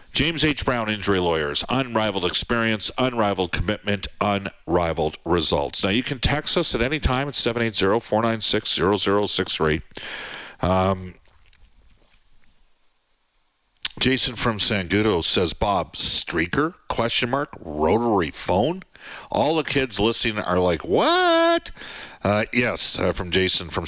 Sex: male